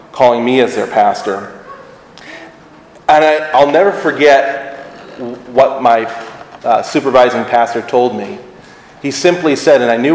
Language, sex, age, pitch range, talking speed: English, male, 40-59, 115-135 Hz, 130 wpm